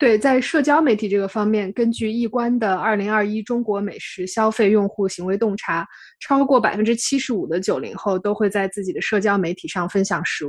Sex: female